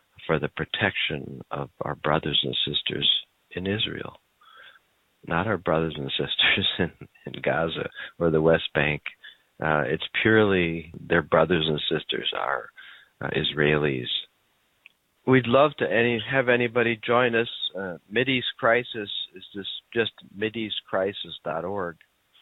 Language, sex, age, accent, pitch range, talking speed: English, male, 50-69, American, 90-110 Hz, 125 wpm